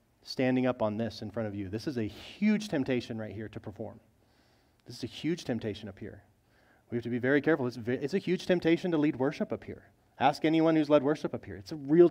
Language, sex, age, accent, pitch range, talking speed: English, male, 30-49, American, 115-155 Hz, 245 wpm